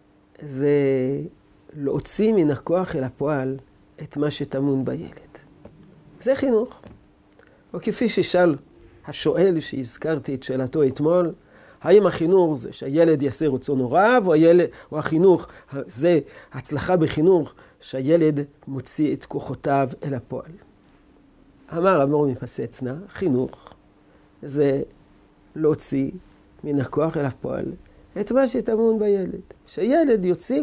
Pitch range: 140-185 Hz